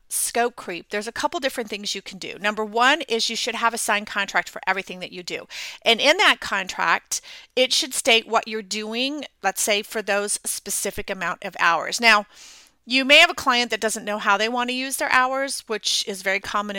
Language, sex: English, female